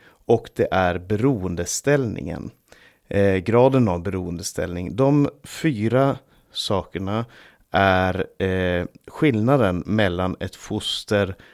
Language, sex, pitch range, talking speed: Swedish, male, 95-120 Hz, 90 wpm